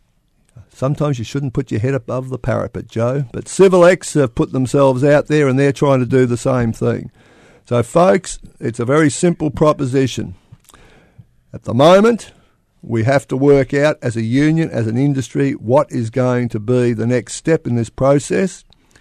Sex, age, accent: male, 50-69, Australian